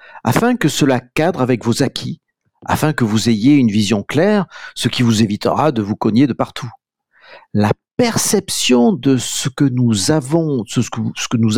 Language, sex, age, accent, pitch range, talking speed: French, male, 50-69, French, 120-165 Hz, 155 wpm